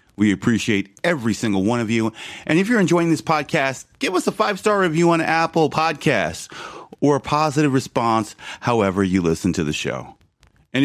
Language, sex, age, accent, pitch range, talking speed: English, male, 30-49, American, 105-150 Hz, 185 wpm